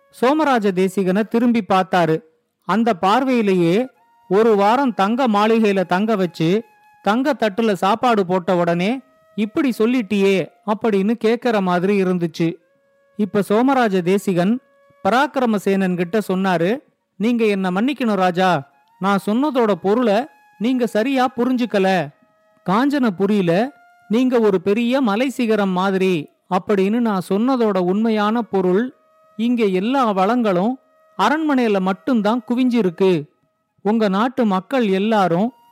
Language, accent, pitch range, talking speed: Tamil, native, 195-245 Hz, 100 wpm